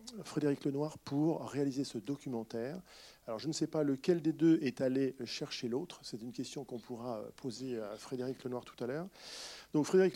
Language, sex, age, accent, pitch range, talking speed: French, male, 40-59, French, 125-155 Hz, 190 wpm